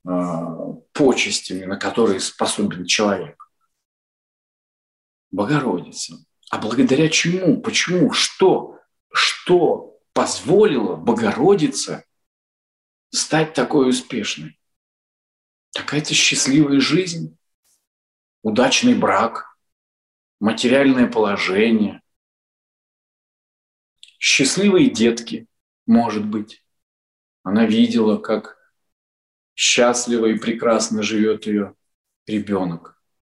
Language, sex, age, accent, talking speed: Russian, male, 40-59, native, 70 wpm